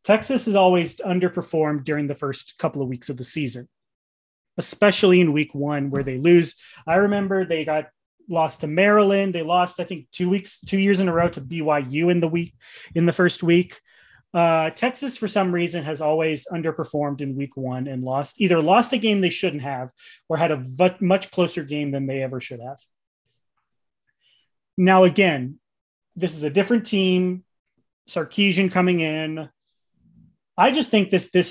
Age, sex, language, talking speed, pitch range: 30-49, male, English, 175 wpm, 145-185 Hz